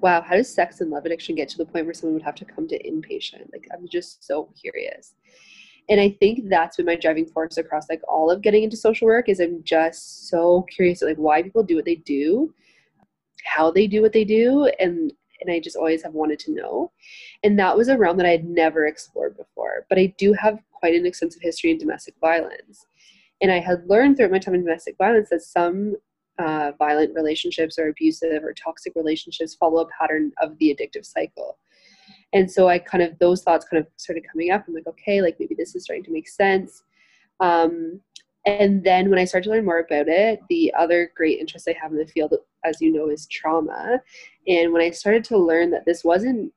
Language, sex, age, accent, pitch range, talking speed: English, female, 20-39, American, 165-220 Hz, 220 wpm